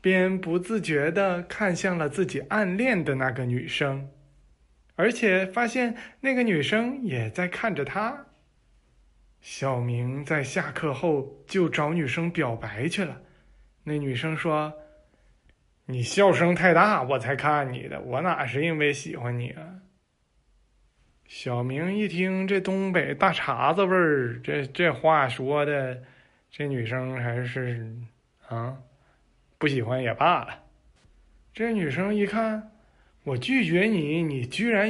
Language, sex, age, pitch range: Chinese, male, 20-39, 130-190 Hz